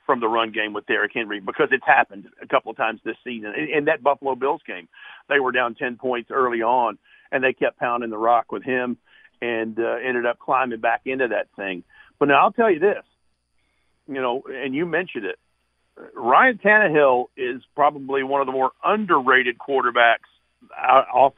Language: English